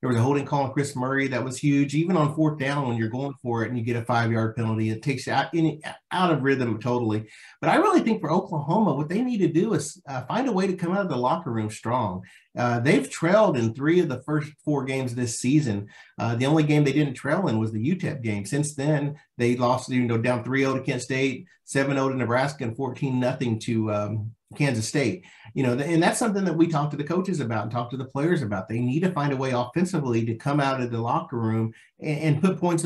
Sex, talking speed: male, 250 wpm